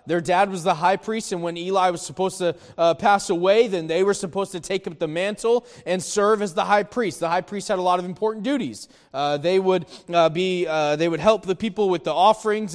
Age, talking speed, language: 20-39, 250 wpm, English